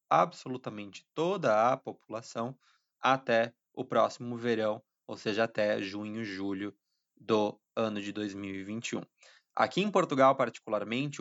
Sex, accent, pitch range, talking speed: male, Brazilian, 110-130 Hz, 110 wpm